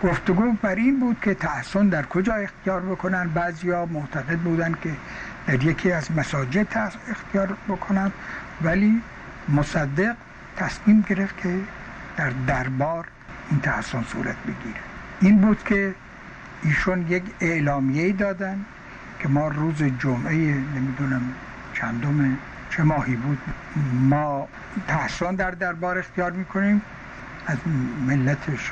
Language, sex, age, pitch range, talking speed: Persian, male, 60-79, 135-185 Hz, 115 wpm